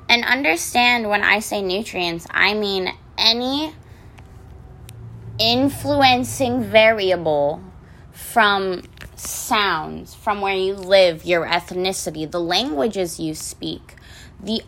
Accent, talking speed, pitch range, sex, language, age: American, 100 wpm, 160-200 Hz, female, English, 20-39